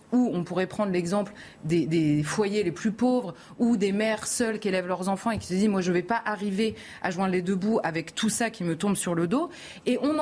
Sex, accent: female, French